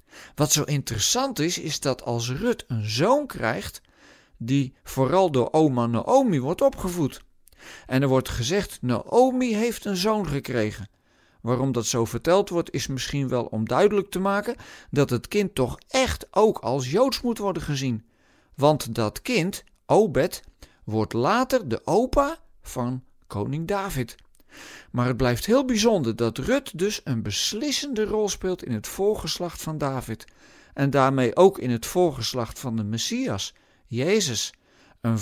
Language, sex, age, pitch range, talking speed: Dutch, male, 50-69, 120-200 Hz, 150 wpm